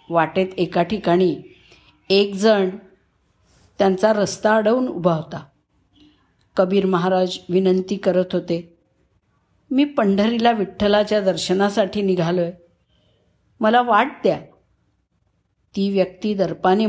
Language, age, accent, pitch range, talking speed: Marathi, 50-69, native, 175-230 Hz, 90 wpm